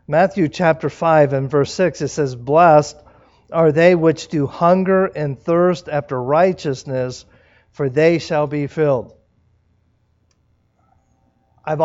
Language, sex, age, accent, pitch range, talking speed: English, male, 50-69, American, 135-170 Hz, 120 wpm